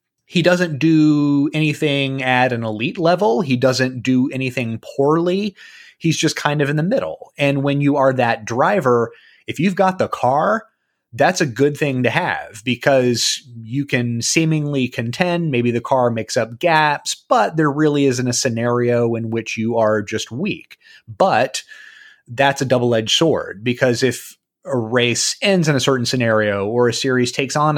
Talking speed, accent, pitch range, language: 170 wpm, American, 120-155 Hz, English